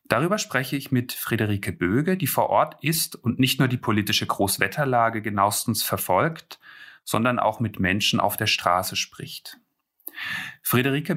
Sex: male